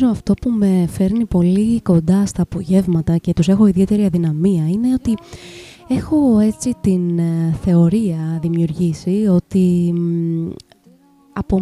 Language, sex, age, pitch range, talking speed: Greek, female, 20-39, 170-225 Hz, 115 wpm